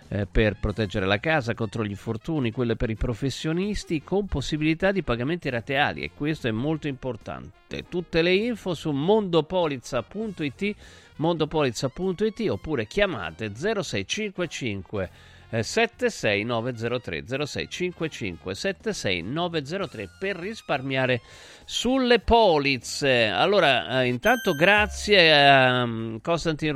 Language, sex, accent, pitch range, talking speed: Italian, male, native, 125-170 Hz, 95 wpm